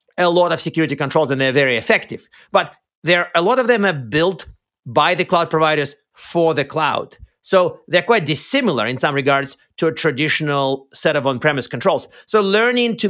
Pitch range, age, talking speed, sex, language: 140-180 Hz, 40-59, 190 wpm, male, English